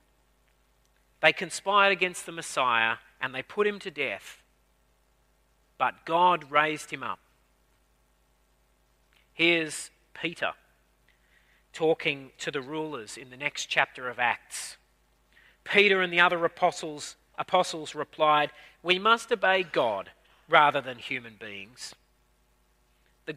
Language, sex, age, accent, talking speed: English, male, 40-59, Australian, 115 wpm